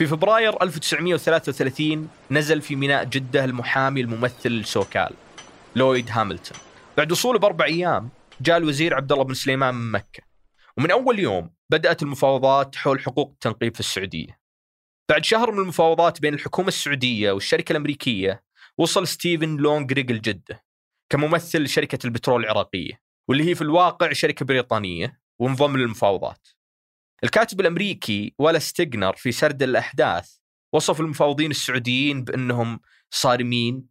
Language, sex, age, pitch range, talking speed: Arabic, male, 20-39, 120-155 Hz, 120 wpm